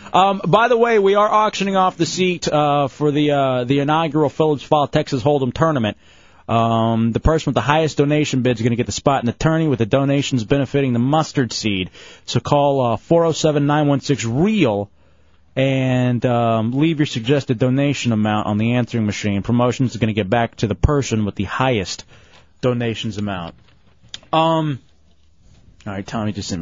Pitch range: 110-150 Hz